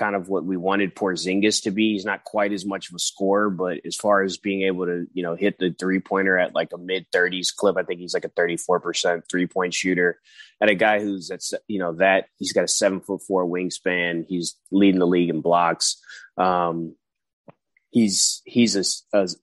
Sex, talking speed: male, 215 wpm